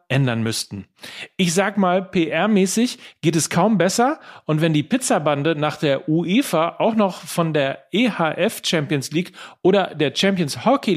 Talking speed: 155 wpm